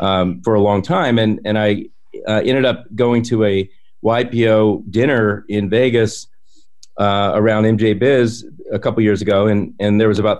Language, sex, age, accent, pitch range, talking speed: English, male, 40-59, American, 105-125 Hz, 180 wpm